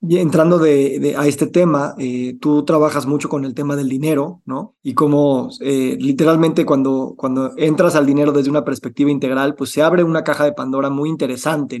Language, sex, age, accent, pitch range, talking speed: Spanish, male, 20-39, Mexican, 135-165 Hz, 200 wpm